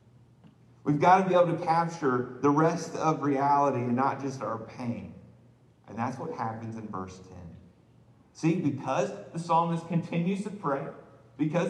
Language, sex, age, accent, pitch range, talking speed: English, male, 40-59, American, 120-170 Hz, 160 wpm